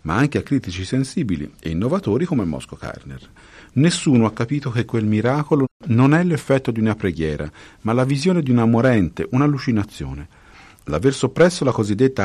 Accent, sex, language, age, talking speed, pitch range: native, male, Italian, 50-69, 160 wpm, 85-135 Hz